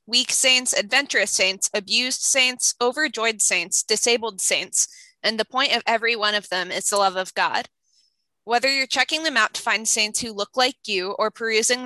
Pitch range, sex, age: 200-235 Hz, female, 20-39